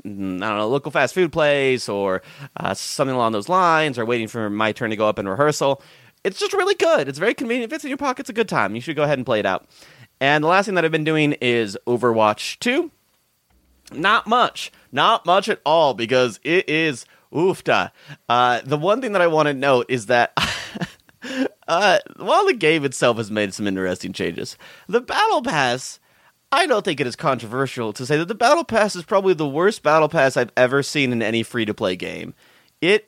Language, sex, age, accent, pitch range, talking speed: English, male, 30-49, American, 115-170 Hz, 215 wpm